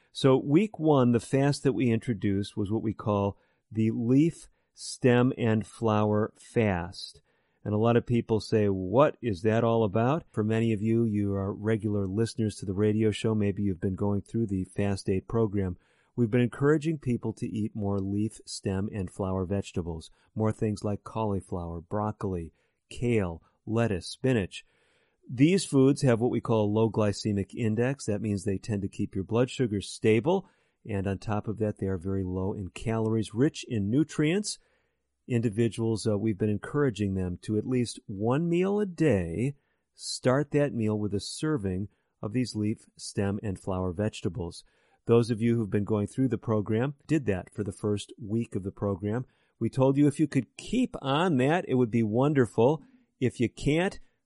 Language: English